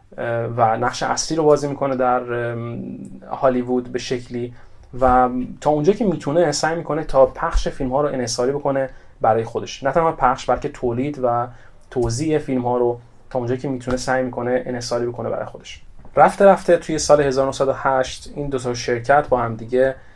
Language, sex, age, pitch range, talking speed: Persian, male, 30-49, 120-135 Hz, 165 wpm